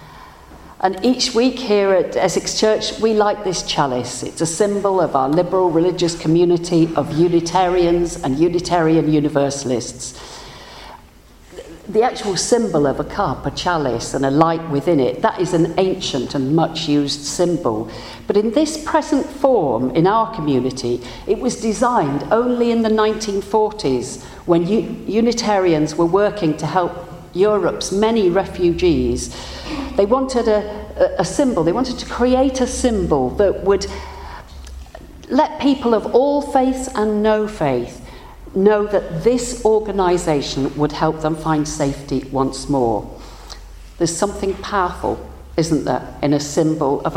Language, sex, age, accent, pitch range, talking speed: English, female, 50-69, British, 150-215 Hz, 140 wpm